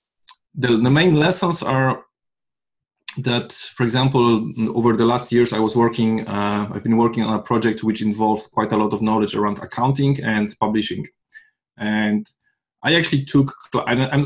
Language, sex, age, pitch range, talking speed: English, male, 20-39, 110-130 Hz, 160 wpm